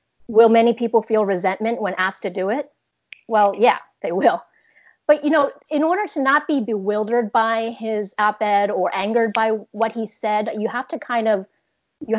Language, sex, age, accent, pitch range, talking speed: English, female, 30-49, American, 190-230 Hz, 185 wpm